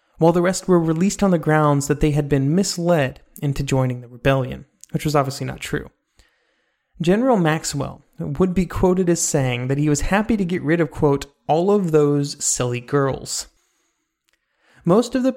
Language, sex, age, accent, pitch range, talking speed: English, male, 30-49, American, 145-185 Hz, 180 wpm